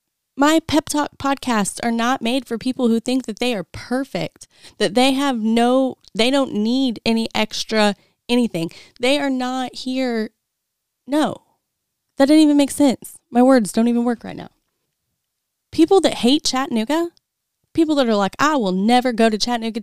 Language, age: English, 10-29